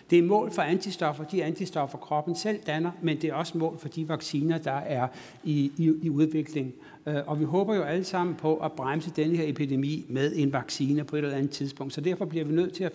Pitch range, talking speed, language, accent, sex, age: 135-160 Hz, 225 wpm, Danish, native, male, 60-79